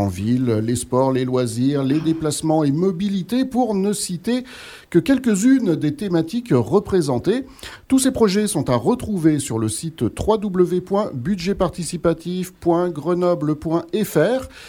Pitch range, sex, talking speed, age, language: 135-210 Hz, male, 110 wpm, 50-69, French